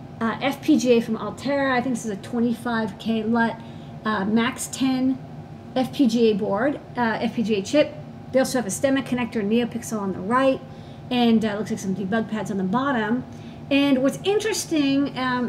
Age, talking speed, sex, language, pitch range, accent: 40-59, 170 wpm, female, English, 215-255 Hz, American